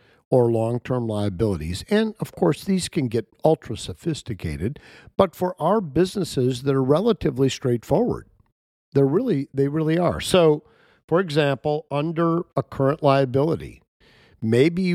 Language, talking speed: English, 130 wpm